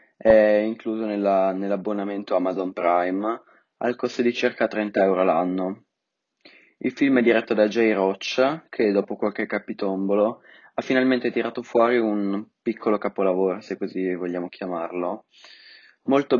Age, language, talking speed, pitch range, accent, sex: 20-39, Italian, 130 wpm, 95-115 Hz, native, male